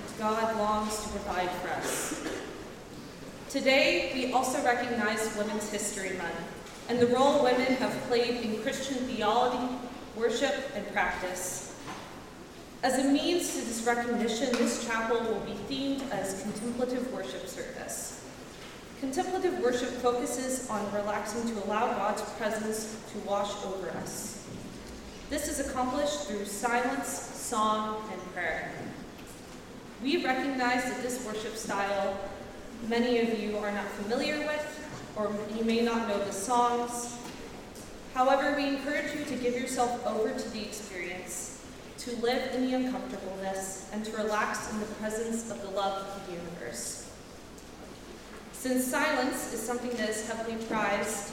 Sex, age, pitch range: female, 20-39, 210-250 Hz